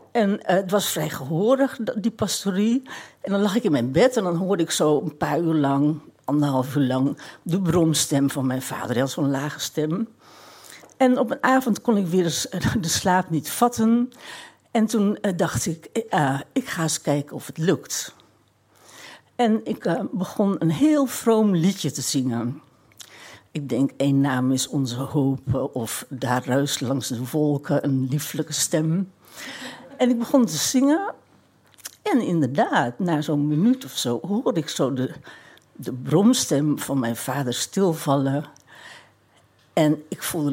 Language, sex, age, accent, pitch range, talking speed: Dutch, female, 60-79, Dutch, 140-205 Hz, 165 wpm